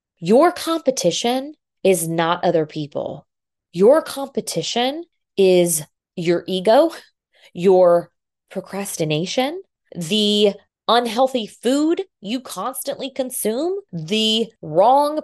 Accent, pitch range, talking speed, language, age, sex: American, 165-230 Hz, 85 wpm, English, 20-39, female